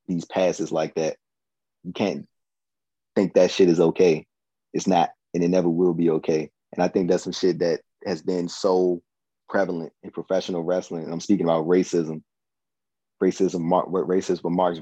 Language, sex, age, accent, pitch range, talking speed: English, male, 20-39, American, 80-90 Hz, 170 wpm